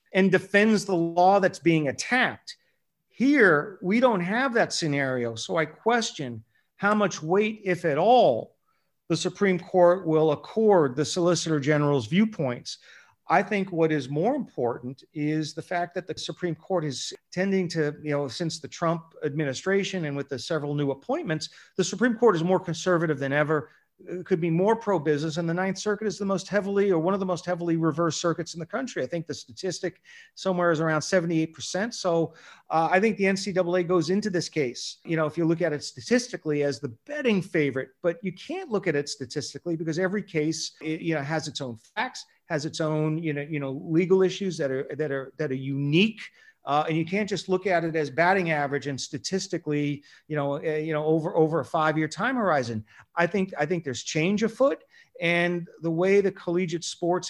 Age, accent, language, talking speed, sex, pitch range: 40-59, American, English, 200 wpm, male, 150-190 Hz